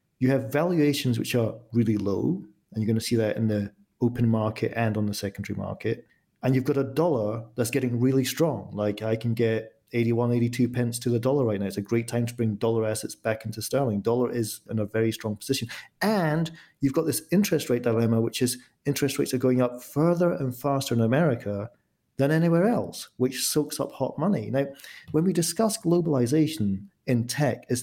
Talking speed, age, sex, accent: 205 wpm, 40-59, male, British